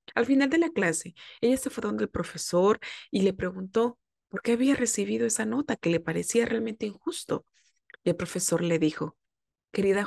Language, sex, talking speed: Spanish, female, 185 wpm